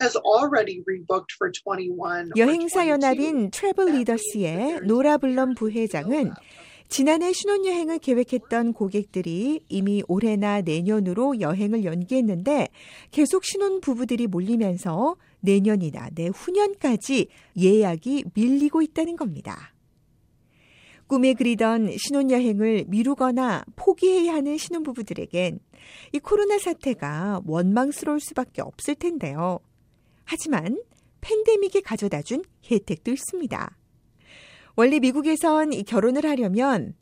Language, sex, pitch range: Korean, female, 200-300 Hz